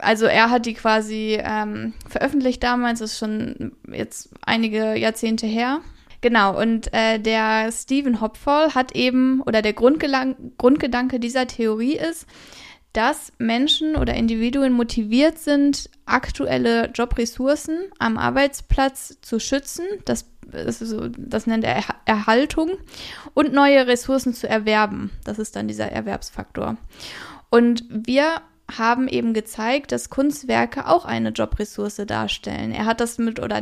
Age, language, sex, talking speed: 10-29, German, female, 135 wpm